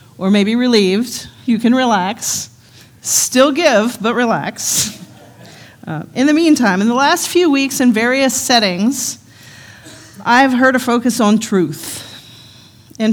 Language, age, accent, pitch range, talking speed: English, 40-59, American, 165-240 Hz, 135 wpm